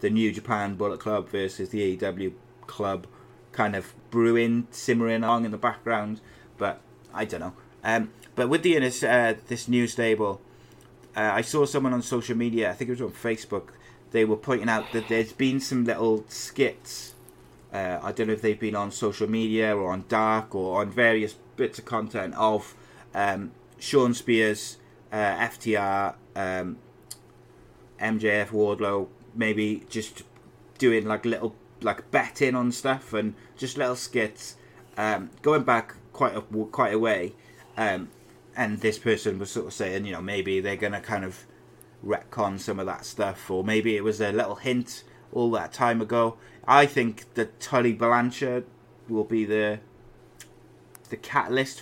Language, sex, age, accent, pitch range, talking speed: English, male, 20-39, British, 105-120 Hz, 165 wpm